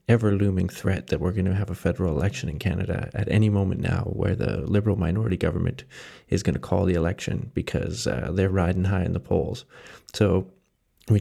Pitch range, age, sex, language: 90-110 Hz, 20-39, male, English